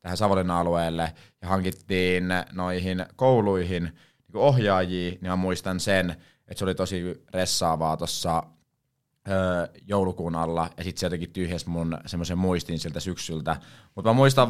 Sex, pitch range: male, 85-100 Hz